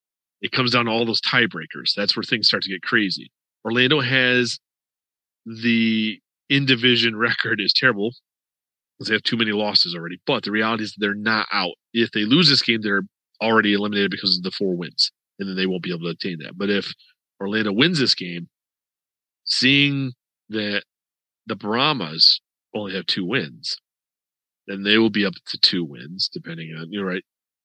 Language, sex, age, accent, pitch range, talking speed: English, male, 40-59, American, 95-115 Hz, 180 wpm